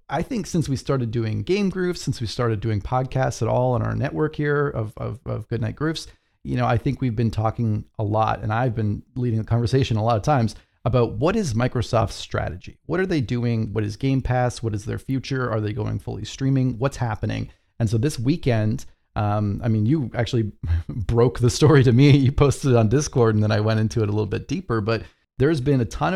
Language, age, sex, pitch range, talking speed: English, 30-49, male, 105-125 Hz, 230 wpm